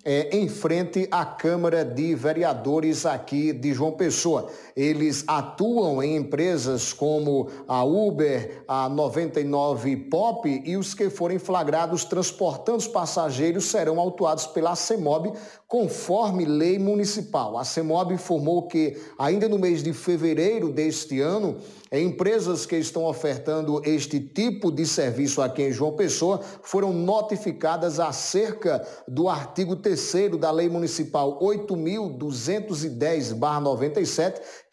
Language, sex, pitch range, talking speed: Portuguese, male, 150-190 Hz, 120 wpm